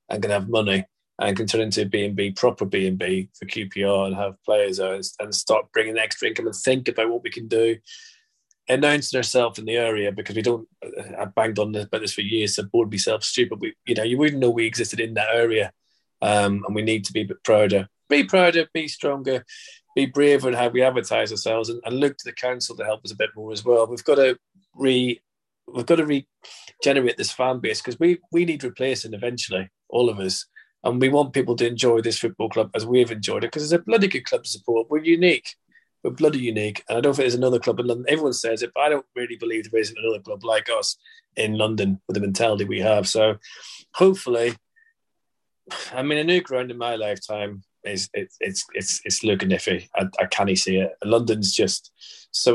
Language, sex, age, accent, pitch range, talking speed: English, male, 30-49, British, 105-145 Hz, 225 wpm